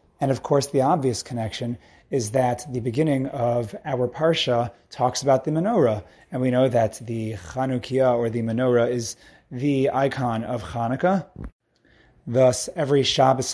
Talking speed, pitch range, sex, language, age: 150 wpm, 110-130 Hz, male, English, 30-49